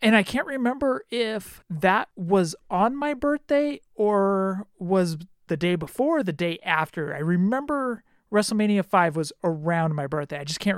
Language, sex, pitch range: English, male, 170-225 Hz